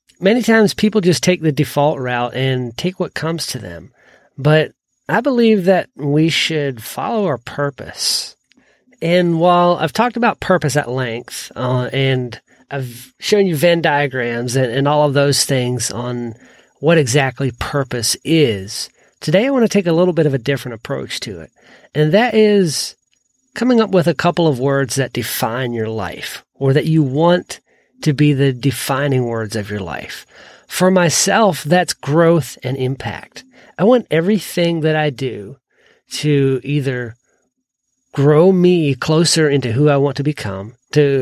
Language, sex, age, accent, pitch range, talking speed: English, male, 40-59, American, 130-170 Hz, 165 wpm